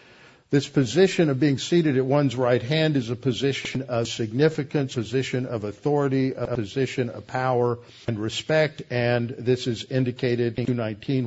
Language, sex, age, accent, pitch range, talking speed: English, male, 60-79, American, 115-130 Hz, 160 wpm